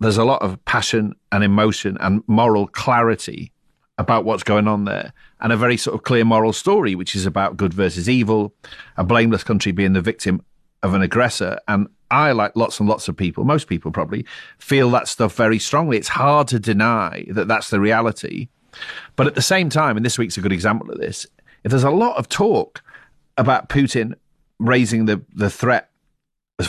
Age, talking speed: 40-59, 200 wpm